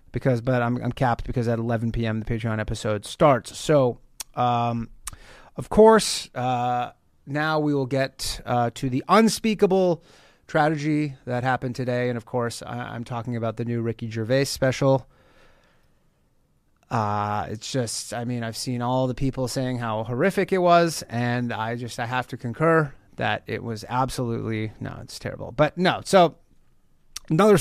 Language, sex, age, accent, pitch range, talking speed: English, male, 30-49, American, 120-170 Hz, 160 wpm